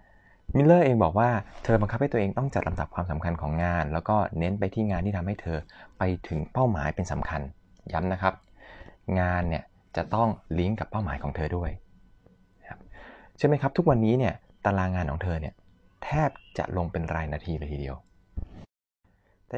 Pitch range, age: 85-105 Hz, 20-39